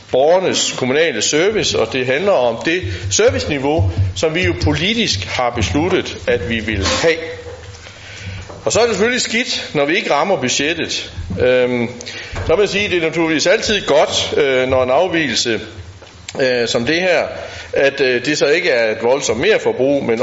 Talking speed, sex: 170 wpm, male